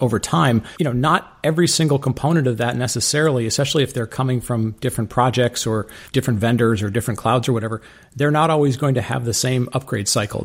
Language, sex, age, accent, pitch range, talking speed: English, male, 40-59, American, 110-135 Hz, 205 wpm